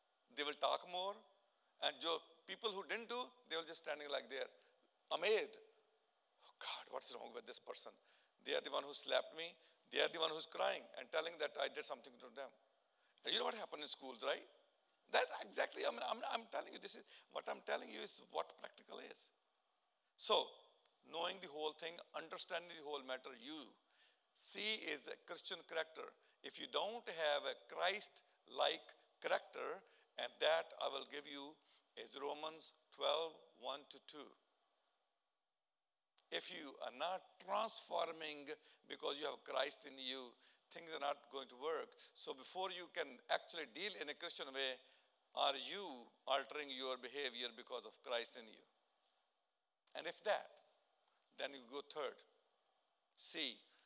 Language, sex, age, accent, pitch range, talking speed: English, male, 50-69, Indian, 145-225 Hz, 170 wpm